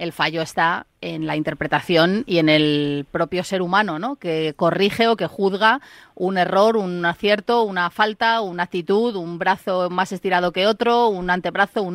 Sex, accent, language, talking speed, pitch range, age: female, Spanish, Spanish, 175 wpm, 175-230 Hz, 30-49